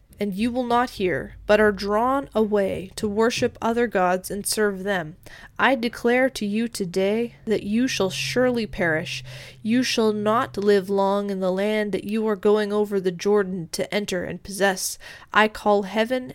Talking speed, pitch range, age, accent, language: 175 wpm, 190-230 Hz, 20-39, American, English